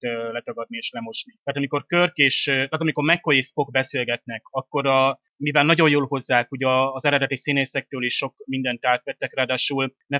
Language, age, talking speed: Hungarian, 30-49, 170 wpm